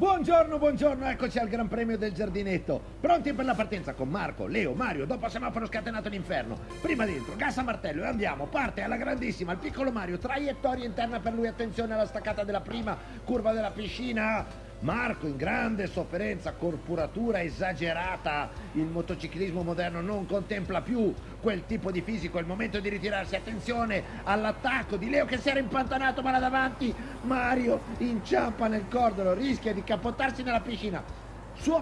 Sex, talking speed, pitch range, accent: male, 165 wpm, 185-255 Hz, native